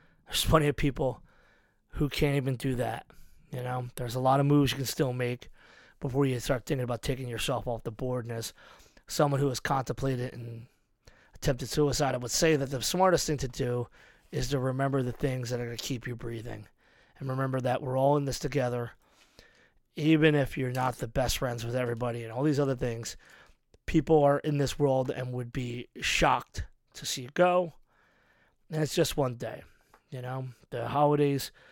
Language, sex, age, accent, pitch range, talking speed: English, male, 20-39, American, 125-155 Hz, 195 wpm